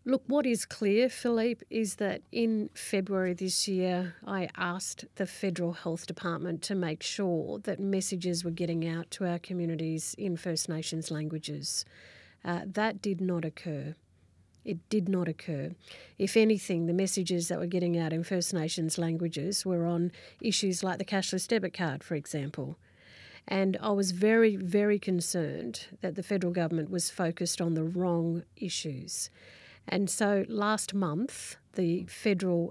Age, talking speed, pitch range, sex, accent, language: 40-59, 155 wpm, 165-200 Hz, female, Australian, English